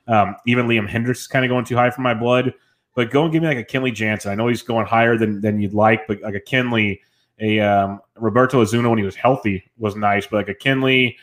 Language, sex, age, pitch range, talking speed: English, male, 20-39, 105-120 Hz, 260 wpm